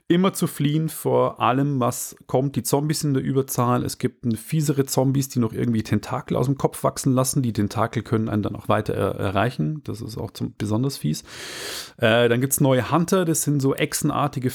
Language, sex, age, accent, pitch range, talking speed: German, male, 30-49, German, 115-145 Hz, 215 wpm